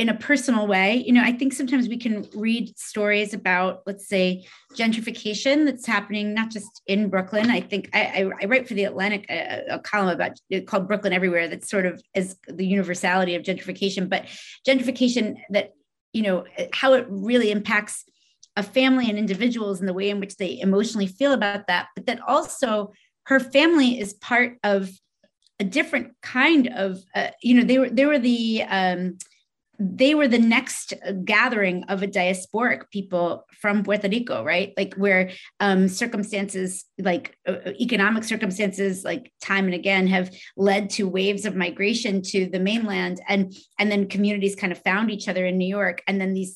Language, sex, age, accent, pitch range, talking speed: English, female, 30-49, American, 190-225 Hz, 180 wpm